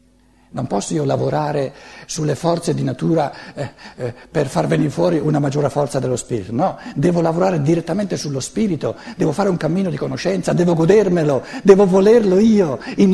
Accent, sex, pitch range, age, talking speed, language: native, male, 145-215 Hz, 60-79, 170 wpm, Italian